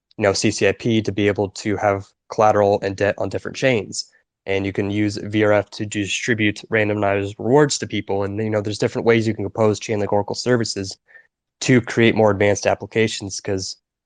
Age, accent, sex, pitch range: 20-39, American, male, 100-115 Hz